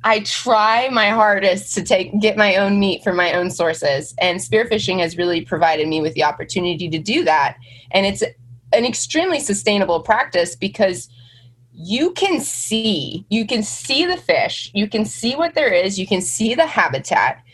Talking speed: 180 wpm